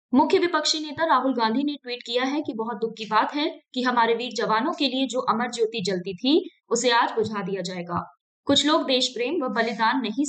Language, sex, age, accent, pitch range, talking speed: Hindi, female, 20-39, native, 225-285 Hz, 220 wpm